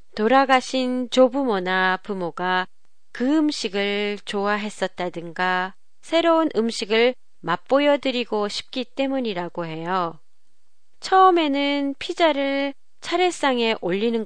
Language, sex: Japanese, female